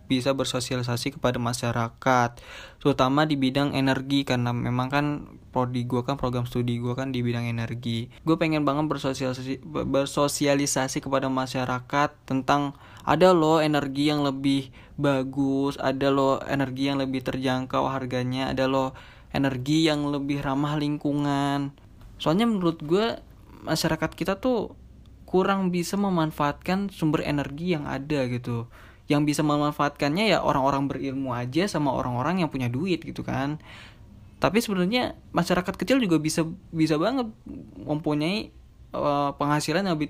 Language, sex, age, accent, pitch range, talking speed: Indonesian, male, 20-39, native, 125-155 Hz, 135 wpm